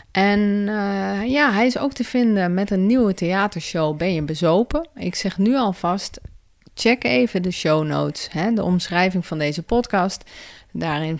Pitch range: 160-210 Hz